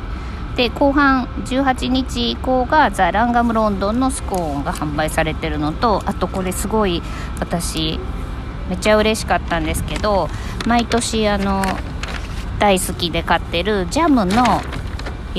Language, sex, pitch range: Japanese, female, 140-220 Hz